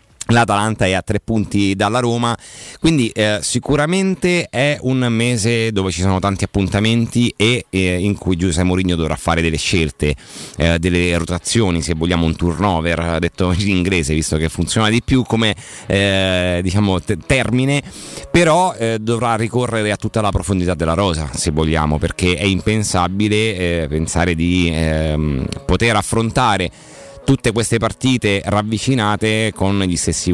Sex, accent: male, native